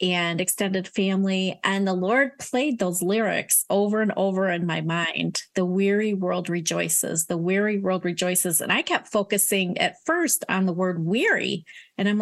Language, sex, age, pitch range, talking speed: English, female, 30-49, 180-215 Hz, 170 wpm